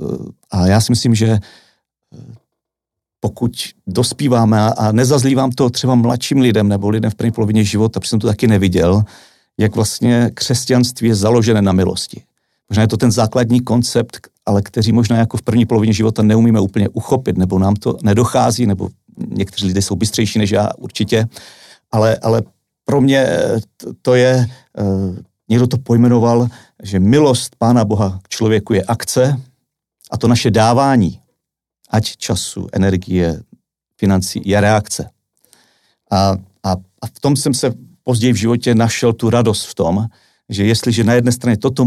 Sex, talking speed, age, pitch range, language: male, 155 wpm, 50-69, 100-120 Hz, Slovak